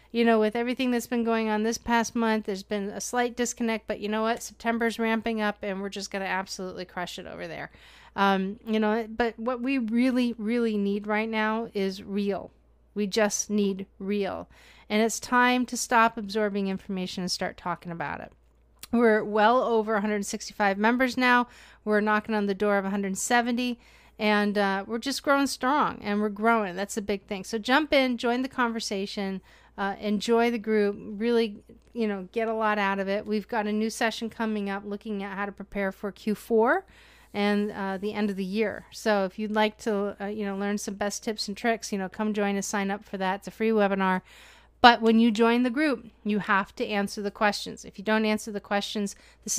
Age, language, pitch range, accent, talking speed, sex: 40-59, English, 200-230 Hz, American, 210 wpm, female